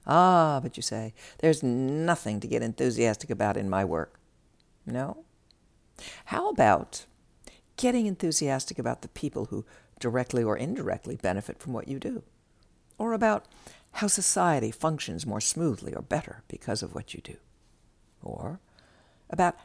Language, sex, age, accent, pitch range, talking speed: English, female, 60-79, American, 110-180 Hz, 140 wpm